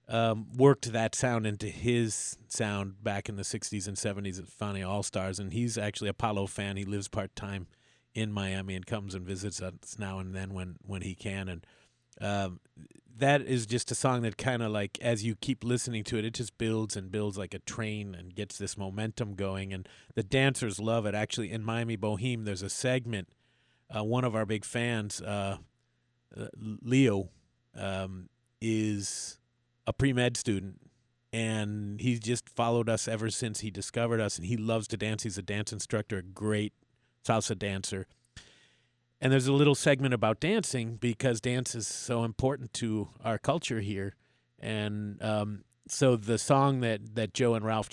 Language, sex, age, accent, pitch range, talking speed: English, male, 40-59, American, 100-120 Hz, 180 wpm